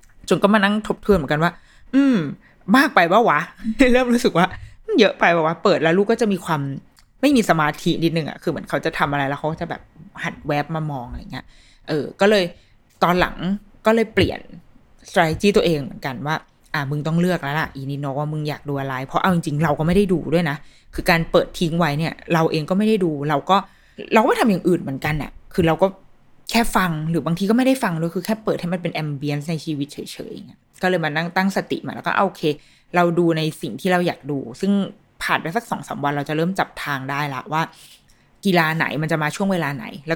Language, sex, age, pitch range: Thai, female, 20-39, 150-190 Hz